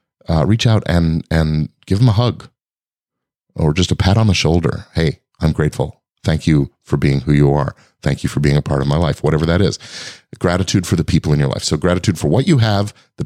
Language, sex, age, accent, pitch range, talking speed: English, male, 40-59, American, 75-100 Hz, 235 wpm